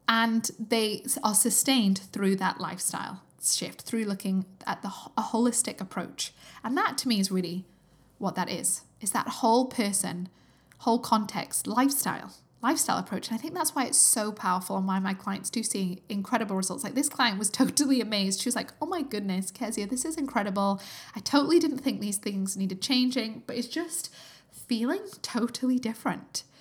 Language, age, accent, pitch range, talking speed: English, 10-29, British, 200-255 Hz, 180 wpm